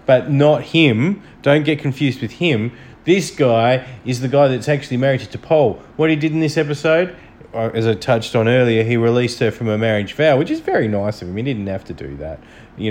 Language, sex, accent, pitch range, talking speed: English, male, Australian, 115-170 Hz, 230 wpm